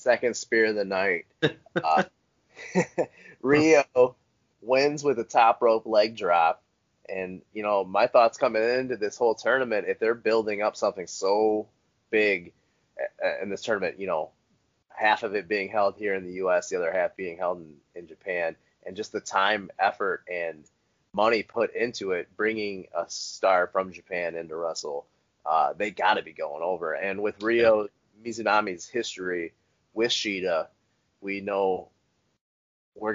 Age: 20-39